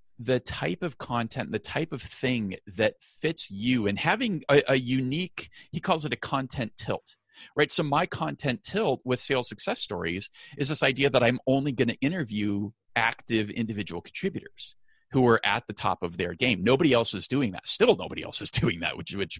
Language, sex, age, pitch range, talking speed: English, male, 40-59, 105-145 Hz, 195 wpm